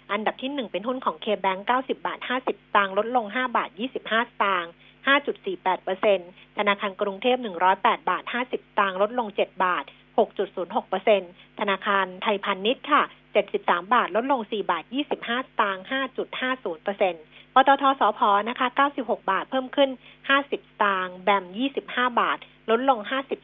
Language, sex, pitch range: Thai, female, 195-260 Hz